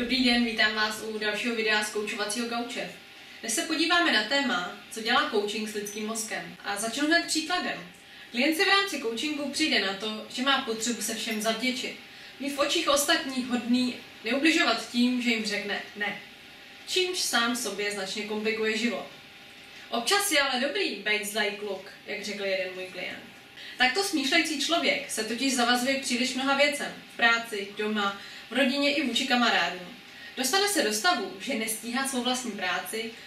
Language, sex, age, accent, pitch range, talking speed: Czech, female, 20-39, native, 210-275 Hz, 165 wpm